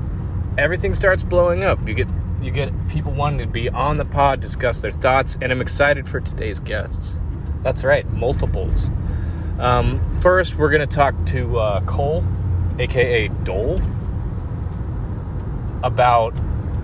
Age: 30-49